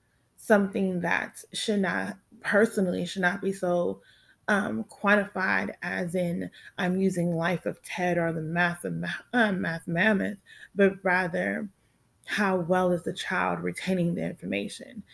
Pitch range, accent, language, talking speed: 175-205 Hz, American, English, 145 wpm